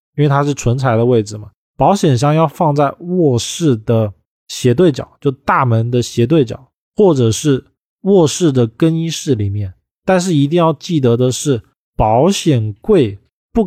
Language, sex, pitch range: Chinese, male, 115-155 Hz